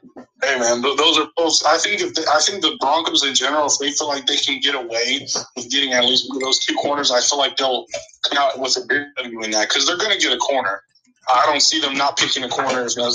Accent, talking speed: American, 270 wpm